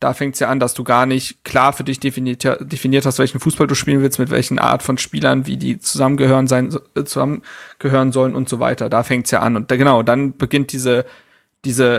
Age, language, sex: 30-49, German, male